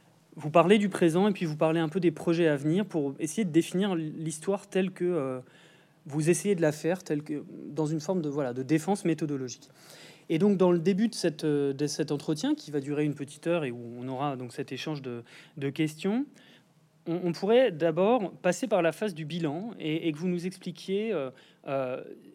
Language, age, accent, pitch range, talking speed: French, 20-39, French, 150-190 Hz, 215 wpm